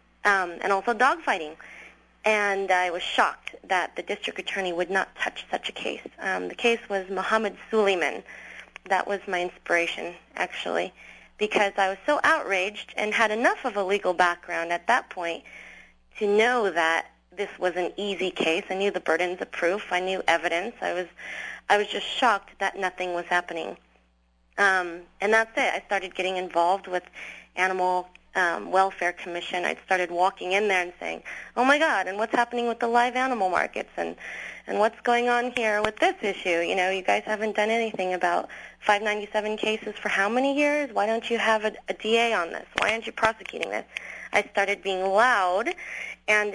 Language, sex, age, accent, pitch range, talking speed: English, female, 30-49, American, 180-215 Hz, 185 wpm